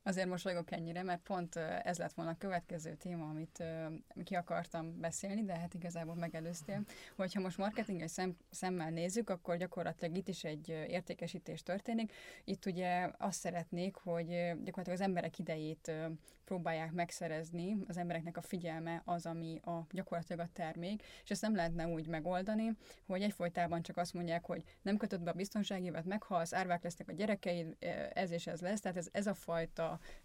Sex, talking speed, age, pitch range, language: female, 170 wpm, 20-39, 170-185 Hz, Hungarian